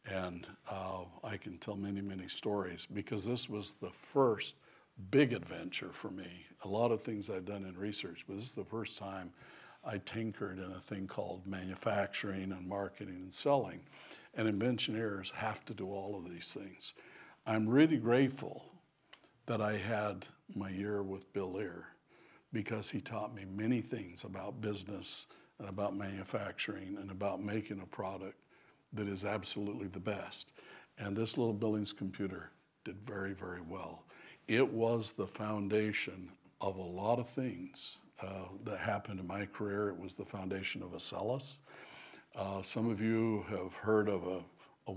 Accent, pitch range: American, 95-110 Hz